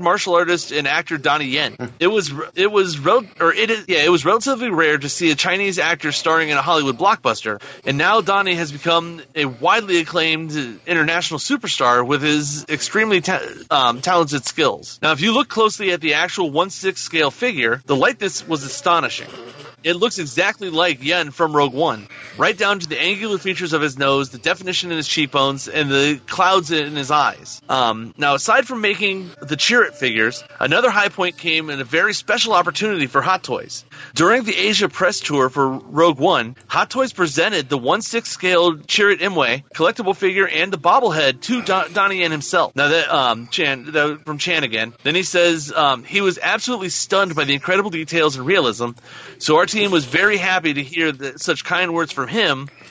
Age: 30-49